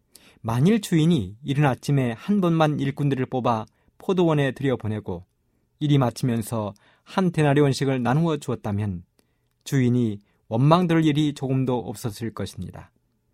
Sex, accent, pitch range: male, native, 115-160 Hz